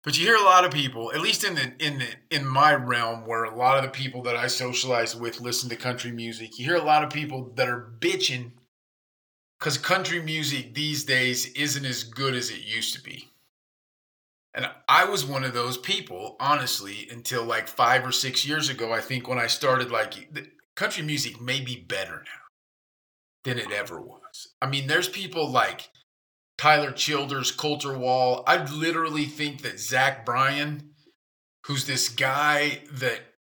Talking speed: 180 wpm